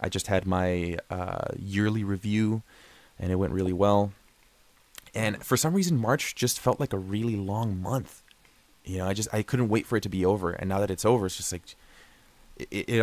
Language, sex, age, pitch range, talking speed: English, male, 20-39, 95-120 Hz, 210 wpm